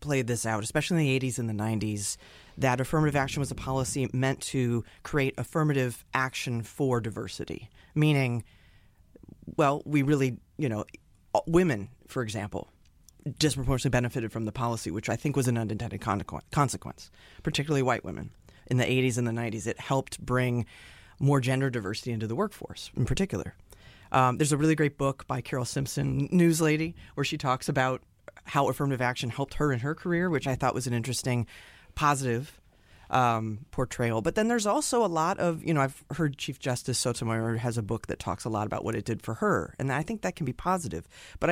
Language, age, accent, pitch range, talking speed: English, 30-49, American, 115-145 Hz, 190 wpm